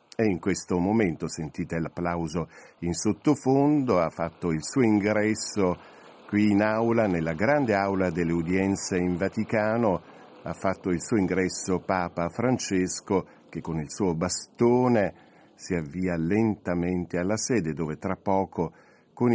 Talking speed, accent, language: 135 wpm, native, Italian